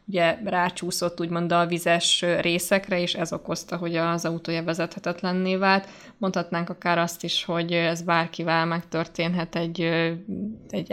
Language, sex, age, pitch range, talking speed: Hungarian, female, 20-39, 170-190 Hz, 130 wpm